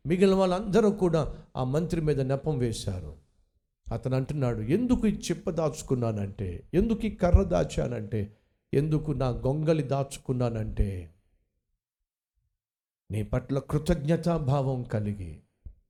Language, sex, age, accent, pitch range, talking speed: Telugu, male, 50-69, native, 115-190 Hz, 100 wpm